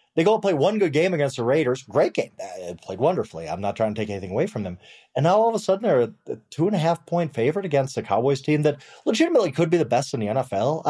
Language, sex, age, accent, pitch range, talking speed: English, male, 30-49, American, 110-170 Hz, 270 wpm